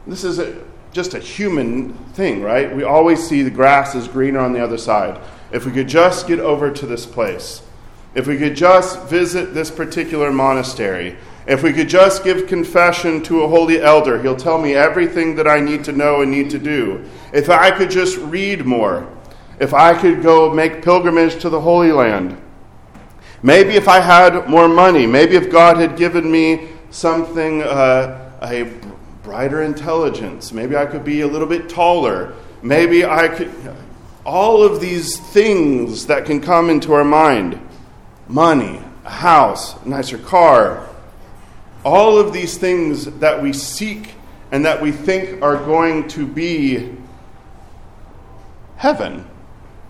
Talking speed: 160 wpm